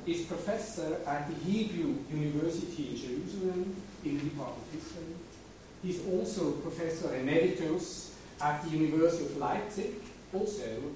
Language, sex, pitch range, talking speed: English, male, 145-175 Hz, 125 wpm